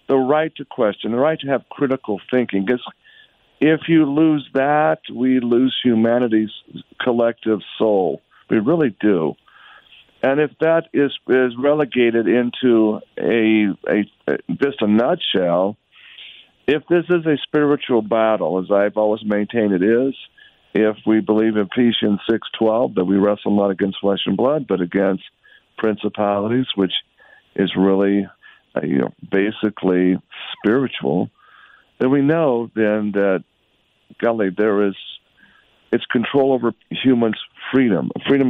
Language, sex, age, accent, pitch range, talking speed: English, male, 50-69, American, 105-130 Hz, 140 wpm